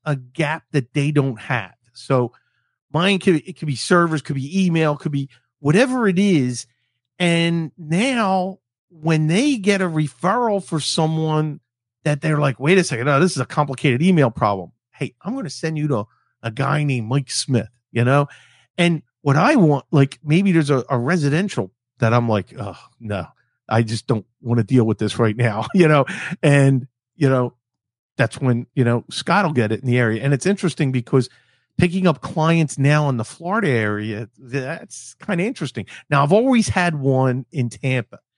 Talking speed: 190 wpm